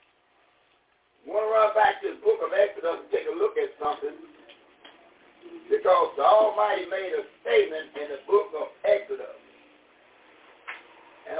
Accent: American